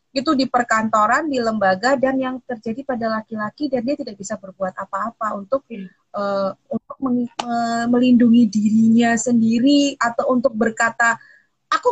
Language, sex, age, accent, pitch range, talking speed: Indonesian, female, 20-39, native, 210-260 Hz, 140 wpm